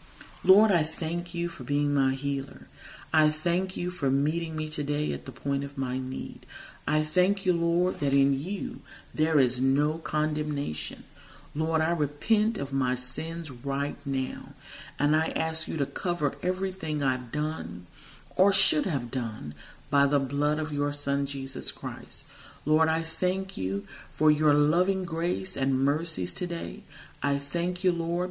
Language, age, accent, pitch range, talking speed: English, 40-59, American, 140-170 Hz, 160 wpm